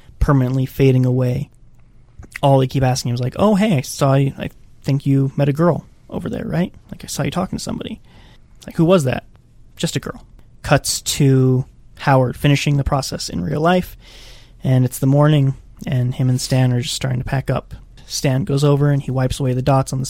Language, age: English, 20-39